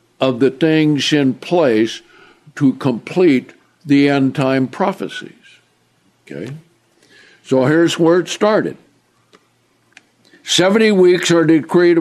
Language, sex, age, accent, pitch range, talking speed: English, male, 60-79, American, 145-180 Hz, 105 wpm